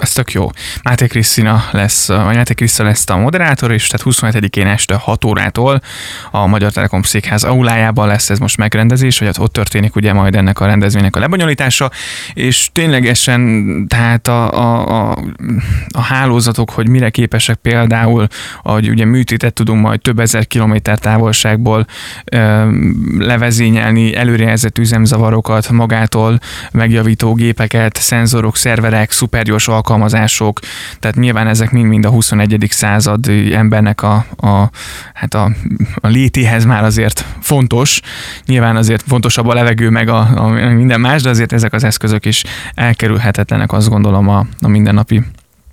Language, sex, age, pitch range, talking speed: Hungarian, male, 20-39, 105-120 Hz, 145 wpm